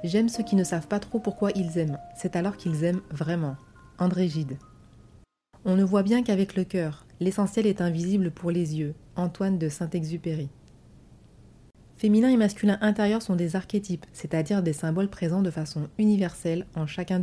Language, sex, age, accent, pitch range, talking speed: French, female, 30-49, French, 165-205 Hz, 185 wpm